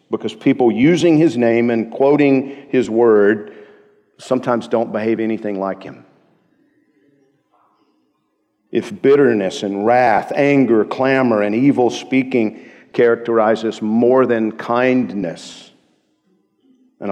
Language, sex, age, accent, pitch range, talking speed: English, male, 50-69, American, 105-130 Hz, 105 wpm